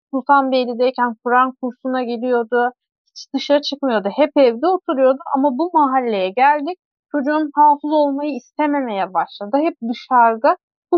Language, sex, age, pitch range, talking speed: Turkish, female, 30-49, 245-320 Hz, 120 wpm